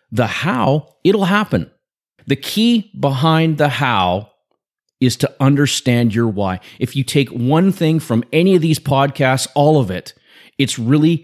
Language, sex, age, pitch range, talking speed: English, male, 30-49, 115-165 Hz, 155 wpm